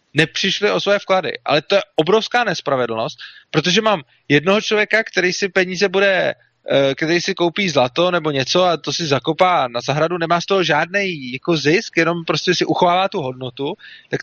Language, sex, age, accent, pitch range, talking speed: Czech, male, 30-49, native, 150-190 Hz, 175 wpm